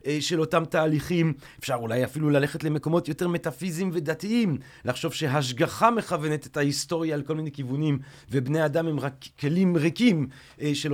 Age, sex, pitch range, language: 40-59, male, 135-190 Hz, Hebrew